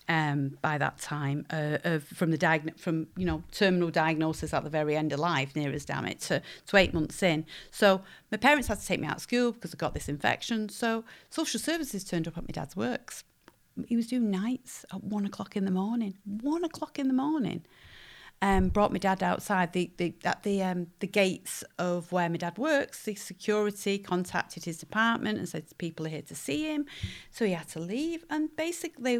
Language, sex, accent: English, female, British